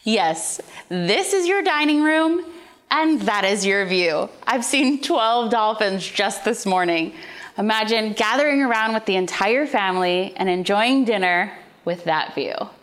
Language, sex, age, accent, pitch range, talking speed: English, female, 20-39, American, 185-255 Hz, 145 wpm